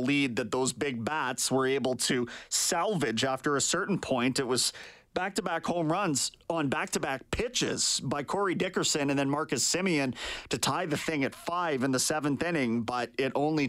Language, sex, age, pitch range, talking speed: English, male, 30-49, 145-200 Hz, 180 wpm